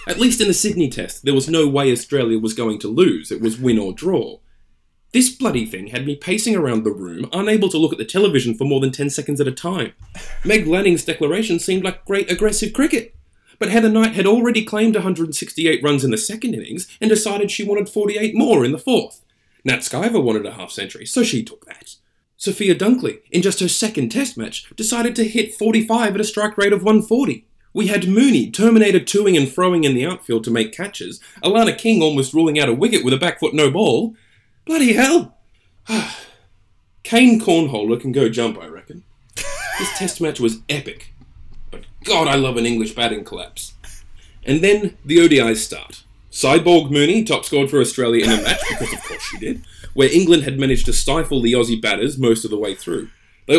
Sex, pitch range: male, 125-215 Hz